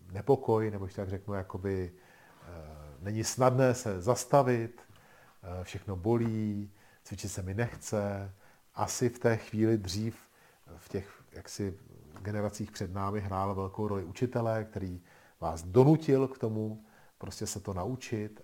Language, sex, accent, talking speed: Czech, male, native, 135 wpm